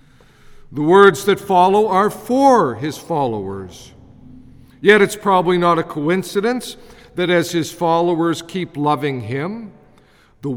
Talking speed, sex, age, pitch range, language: 125 wpm, male, 50-69, 145-190 Hz, English